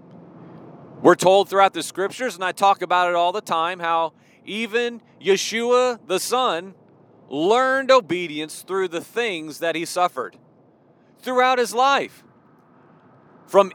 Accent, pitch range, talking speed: American, 165-230 Hz, 130 wpm